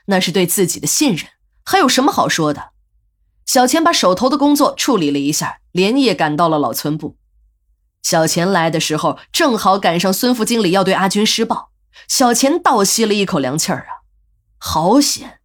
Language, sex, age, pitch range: Chinese, female, 20-39, 175-275 Hz